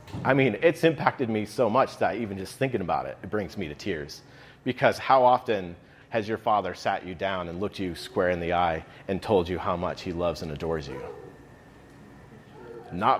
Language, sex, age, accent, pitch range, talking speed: English, male, 30-49, American, 110-130 Hz, 205 wpm